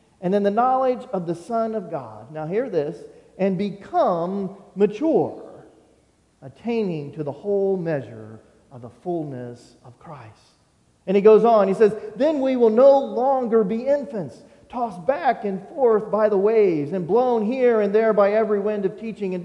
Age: 40-59